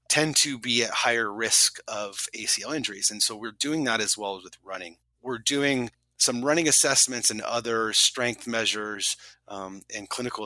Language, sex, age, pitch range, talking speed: English, male, 30-49, 95-120 Hz, 180 wpm